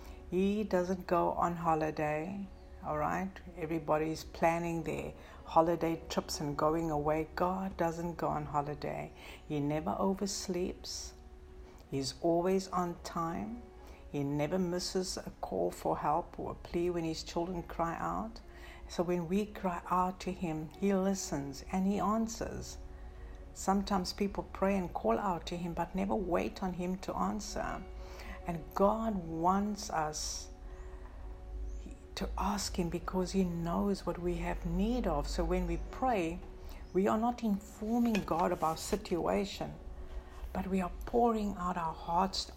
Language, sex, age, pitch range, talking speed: English, female, 60-79, 135-185 Hz, 145 wpm